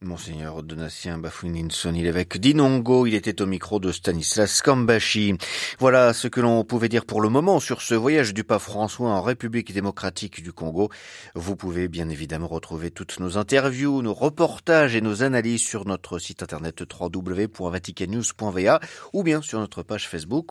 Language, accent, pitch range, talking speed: French, French, 90-125 Hz, 165 wpm